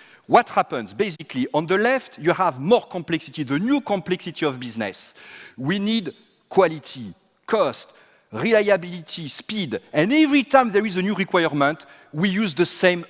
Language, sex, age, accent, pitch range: Chinese, male, 40-59, French, 150-225 Hz